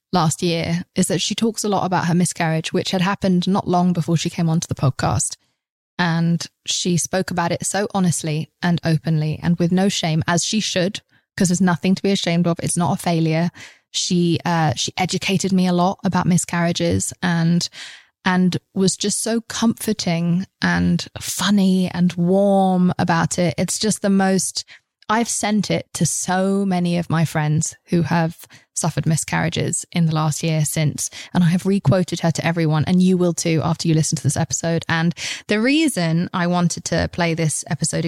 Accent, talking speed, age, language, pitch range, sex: British, 190 wpm, 20-39, English, 165-195 Hz, female